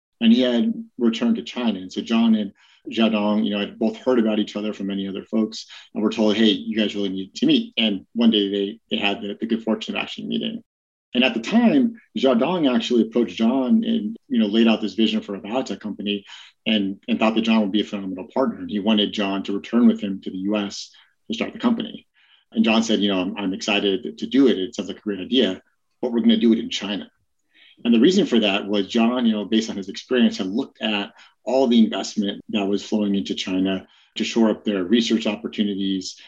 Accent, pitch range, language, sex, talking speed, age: American, 100-115 Hz, English, male, 245 wpm, 30-49